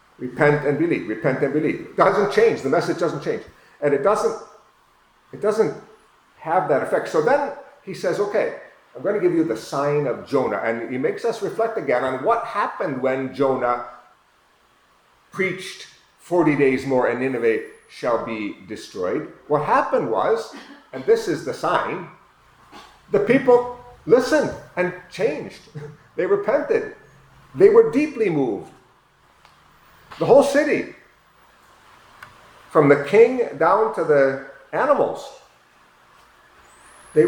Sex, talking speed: male, 135 wpm